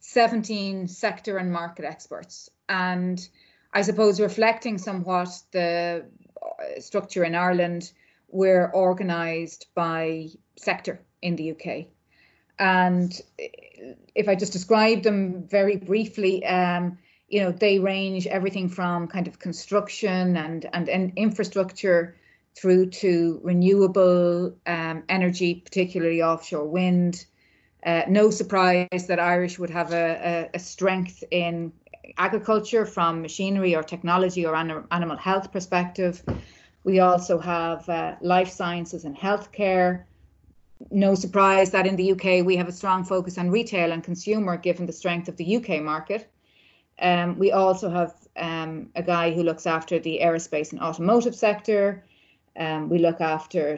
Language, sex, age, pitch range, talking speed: English, female, 30-49, 170-195 Hz, 135 wpm